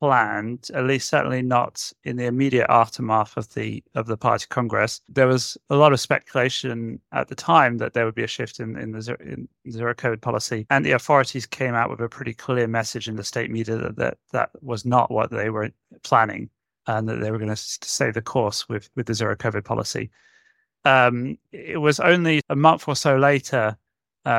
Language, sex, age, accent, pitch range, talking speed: English, male, 30-49, British, 115-135 Hz, 210 wpm